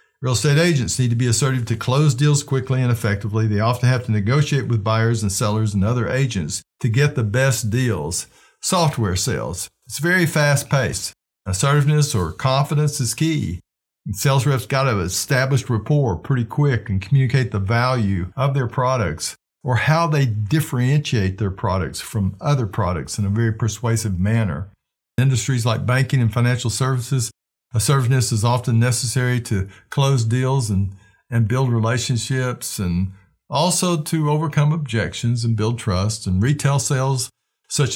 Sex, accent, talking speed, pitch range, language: male, American, 155 wpm, 105-130 Hz, English